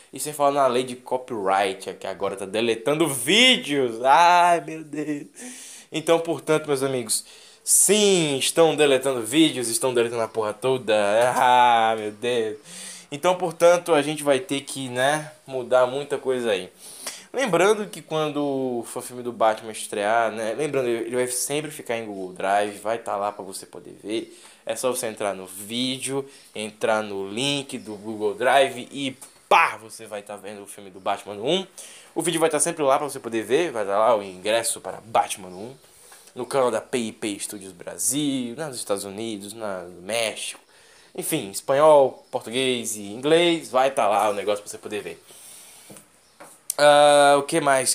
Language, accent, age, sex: Portuguese, Brazilian, 10-29, male